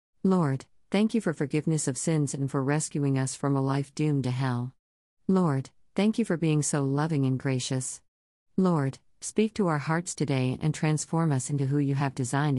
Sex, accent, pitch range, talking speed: female, American, 130-165 Hz, 190 wpm